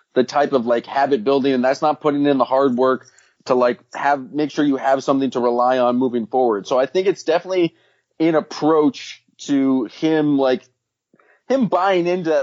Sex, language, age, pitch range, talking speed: male, English, 30-49, 125-155 Hz, 195 wpm